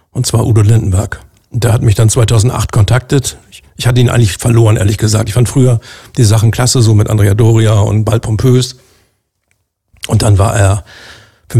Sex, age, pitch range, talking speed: male, 50-69, 110-125 Hz, 190 wpm